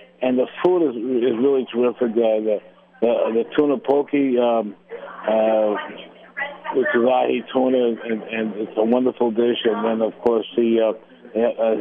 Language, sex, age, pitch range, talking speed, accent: English, male, 50-69, 110-130 Hz, 165 wpm, American